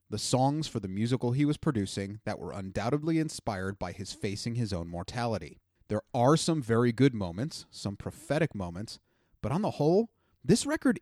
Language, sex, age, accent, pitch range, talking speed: English, male, 30-49, American, 105-145 Hz, 180 wpm